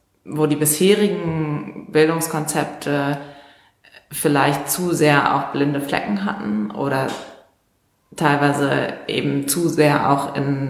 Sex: female